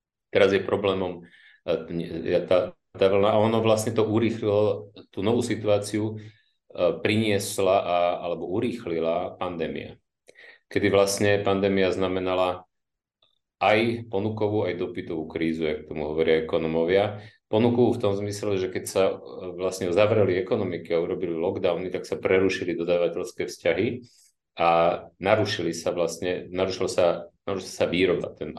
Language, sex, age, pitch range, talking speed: Slovak, male, 40-59, 90-110 Hz, 125 wpm